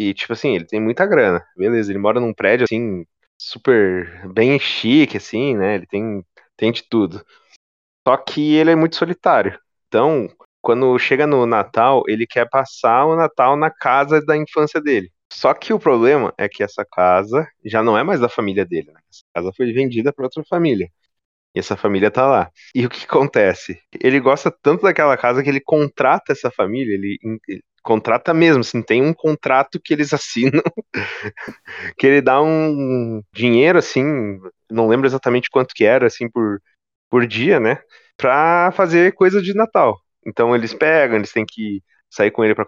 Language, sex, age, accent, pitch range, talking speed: Portuguese, male, 20-39, Brazilian, 105-150 Hz, 180 wpm